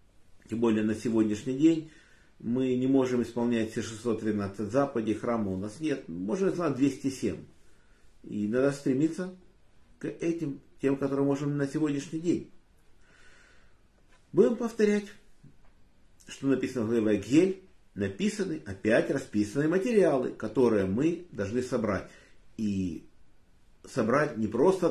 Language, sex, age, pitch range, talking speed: Russian, male, 50-69, 110-155 Hz, 120 wpm